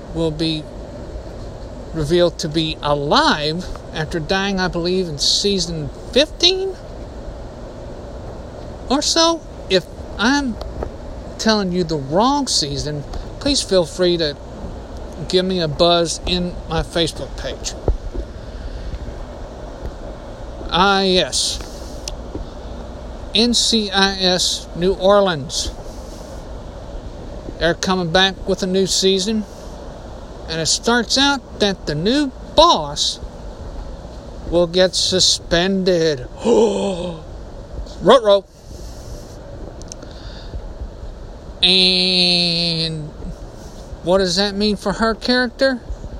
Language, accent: English, American